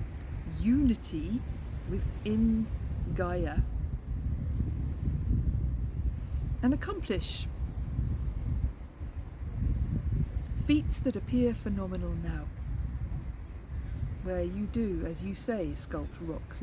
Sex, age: female, 40-59